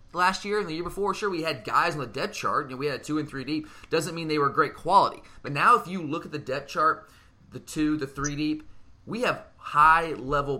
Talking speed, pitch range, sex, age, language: 255 wpm, 120-155 Hz, male, 20-39, English